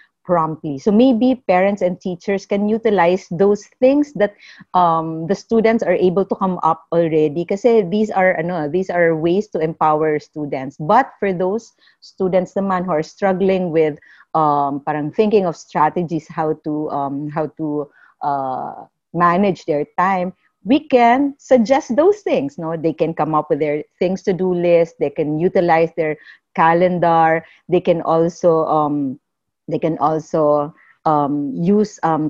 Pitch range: 160-195 Hz